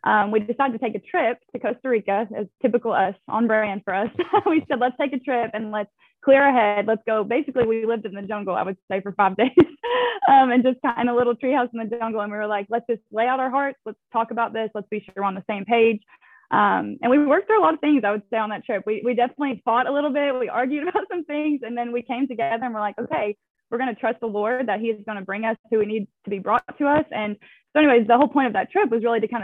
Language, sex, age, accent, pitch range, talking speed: English, female, 10-29, American, 210-260 Hz, 300 wpm